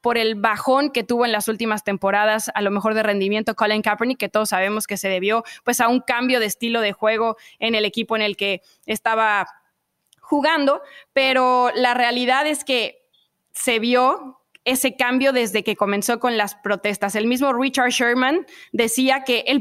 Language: Spanish